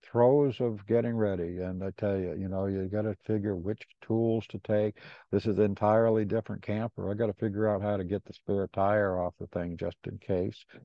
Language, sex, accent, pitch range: English, male, American, 100-130 Hz